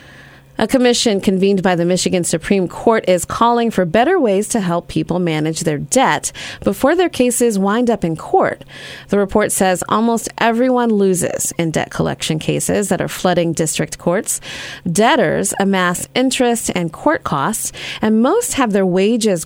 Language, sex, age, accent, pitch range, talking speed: English, female, 30-49, American, 175-215 Hz, 160 wpm